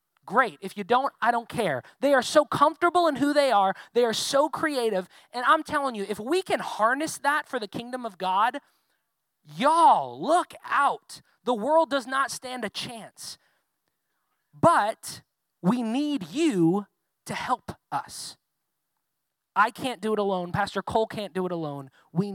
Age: 20-39